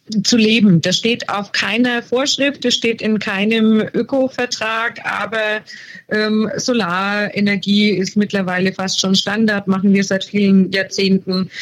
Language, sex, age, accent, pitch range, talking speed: German, female, 20-39, German, 185-215 Hz, 130 wpm